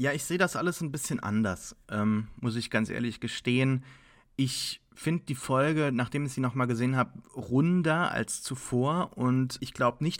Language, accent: English, German